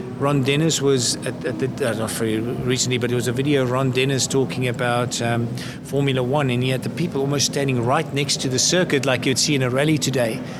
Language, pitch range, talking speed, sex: English, 130-145 Hz, 225 wpm, male